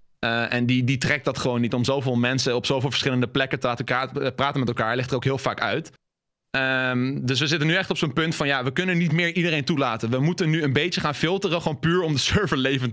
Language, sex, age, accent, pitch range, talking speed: Dutch, male, 20-39, Dutch, 120-145 Hz, 270 wpm